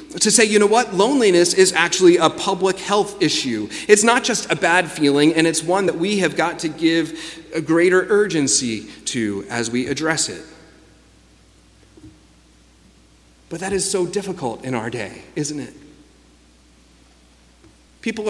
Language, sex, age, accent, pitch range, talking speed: English, male, 30-49, American, 140-205 Hz, 150 wpm